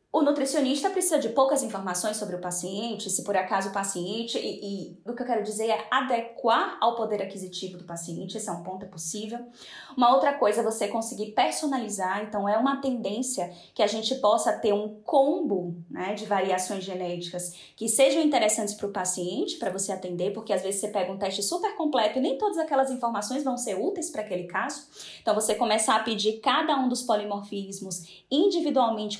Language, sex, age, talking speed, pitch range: Portuguese, female, 10-29, 195 wpm, 200-275 Hz